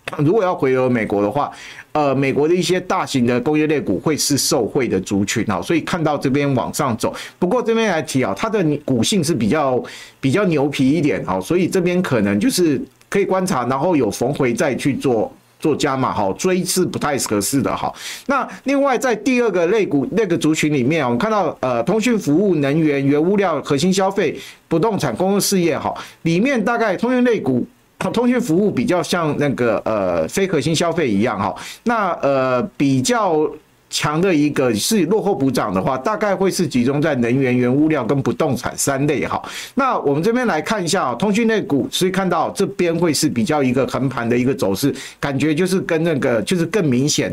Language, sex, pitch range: Chinese, male, 140-195 Hz